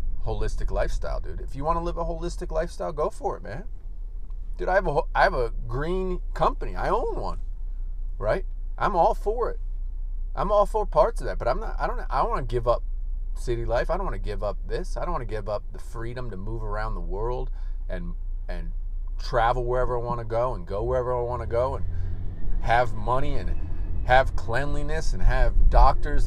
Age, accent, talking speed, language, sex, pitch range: 30-49, American, 215 wpm, English, male, 85-120 Hz